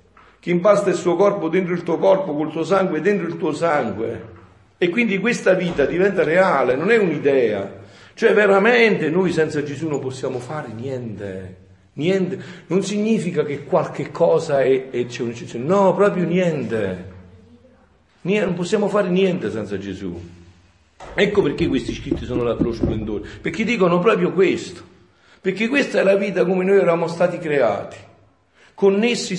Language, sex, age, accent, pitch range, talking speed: Italian, male, 50-69, native, 130-200 Hz, 145 wpm